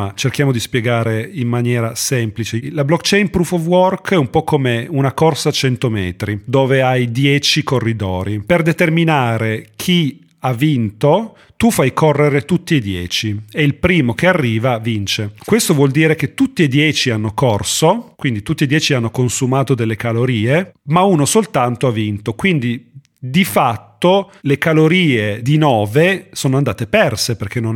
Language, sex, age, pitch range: Italian, male, 40-59, 115-155 Hz